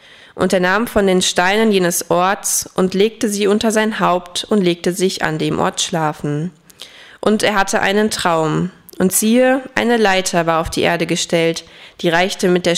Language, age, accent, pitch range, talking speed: German, 20-39, German, 170-205 Hz, 185 wpm